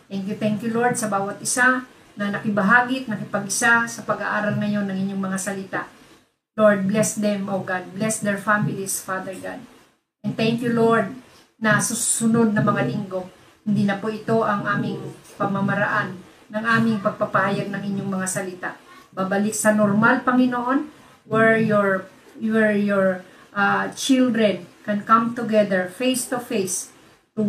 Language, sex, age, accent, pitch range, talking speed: Filipino, female, 40-59, native, 200-230 Hz, 155 wpm